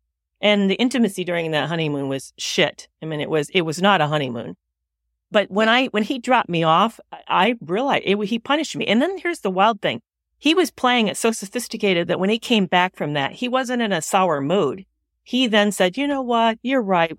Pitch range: 160-230 Hz